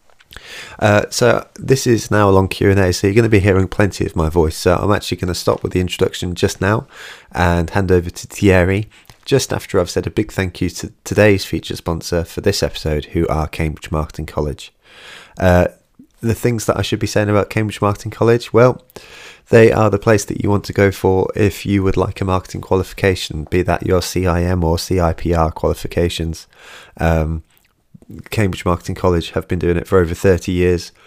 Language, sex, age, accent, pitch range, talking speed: English, male, 30-49, British, 85-105 Hz, 200 wpm